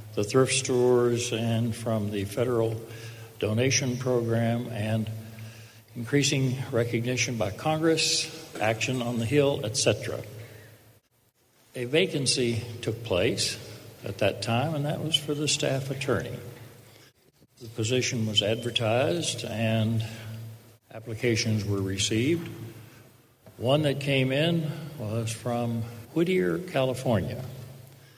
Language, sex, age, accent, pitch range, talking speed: English, male, 60-79, American, 110-130 Hz, 105 wpm